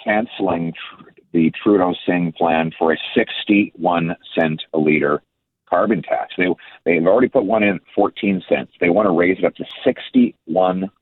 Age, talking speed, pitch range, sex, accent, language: 40-59, 160 wpm, 80-105 Hz, male, American, English